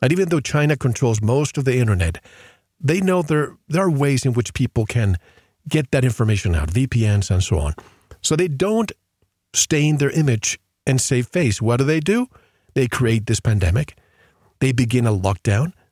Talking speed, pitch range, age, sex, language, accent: 180 wpm, 100-135 Hz, 40-59, male, English, American